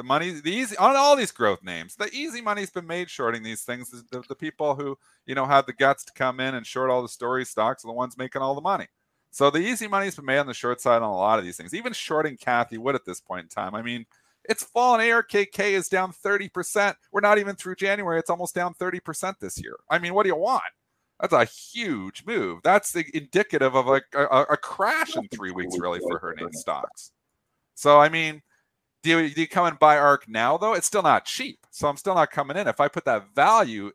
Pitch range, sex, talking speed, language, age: 115-175 Hz, male, 245 wpm, English, 40-59